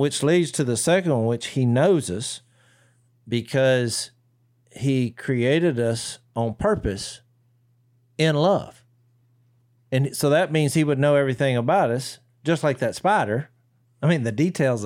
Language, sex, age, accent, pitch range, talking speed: English, male, 50-69, American, 115-140 Hz, 145 wpm